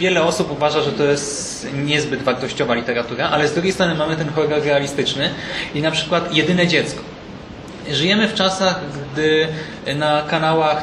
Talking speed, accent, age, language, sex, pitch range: 155 wpm, native, 20-39, Polish, male, 145-175 Hz